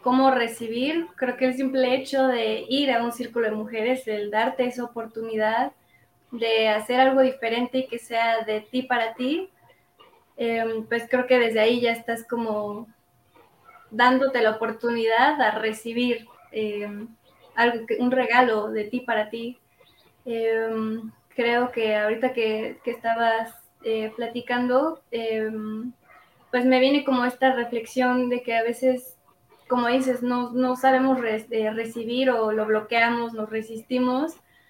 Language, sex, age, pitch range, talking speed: Spanish, female, 20-39, 225-255 Hz, 145 wpm